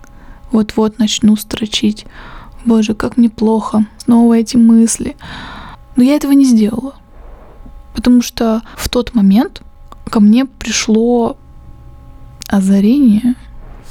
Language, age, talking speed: Russian, 20-39, 105 wpm